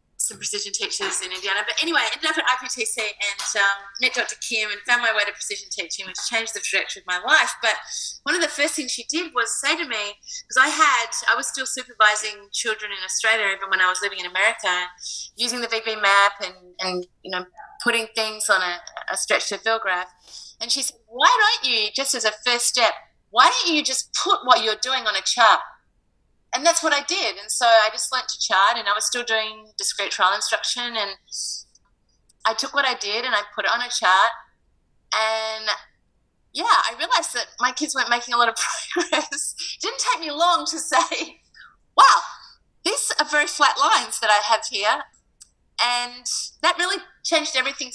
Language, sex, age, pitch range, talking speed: English, female, 30-49, 210-295 Hz, 210 wpm